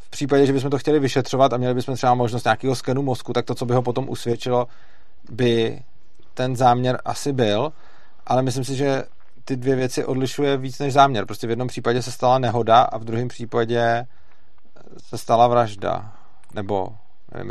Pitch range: 120-140 Hz